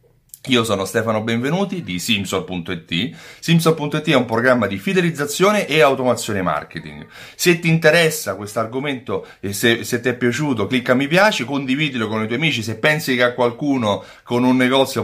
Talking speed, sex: 170 wpm, male